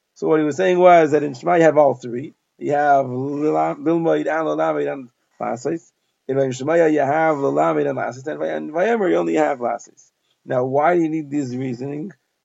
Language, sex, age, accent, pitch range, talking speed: English, male, 30-49, American, 140-170 Hz, 200 wpm